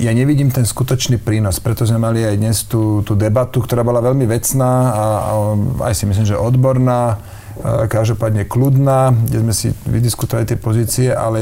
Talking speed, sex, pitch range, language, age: 175 wpm, male, 105-125 Hz, Slovak, 40-59